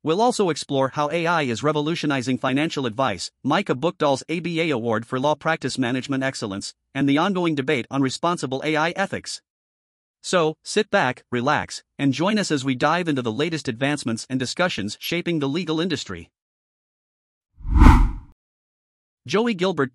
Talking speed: 145 wpm